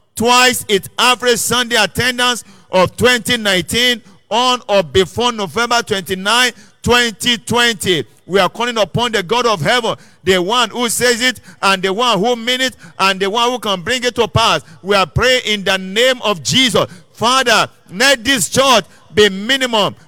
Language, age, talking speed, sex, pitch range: English, 50-69, 165 wpm, male, 195-245 Hz